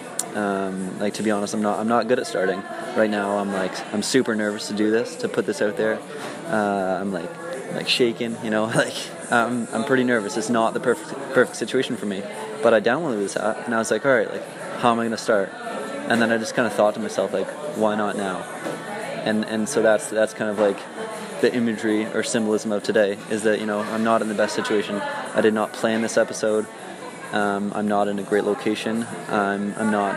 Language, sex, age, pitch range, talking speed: English, male, 20-39, 105-115 Hz, 235 wpm